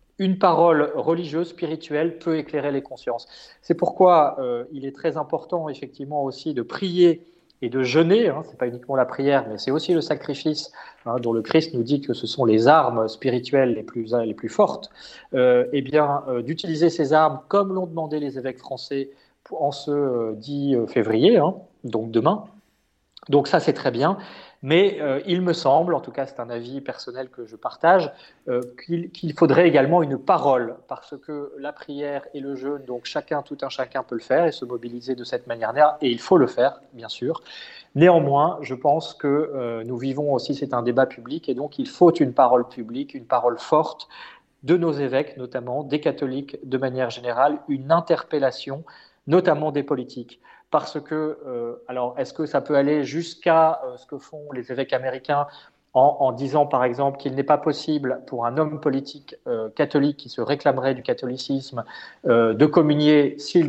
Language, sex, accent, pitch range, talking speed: French, male, French, 125-160 Hz, 190 wpm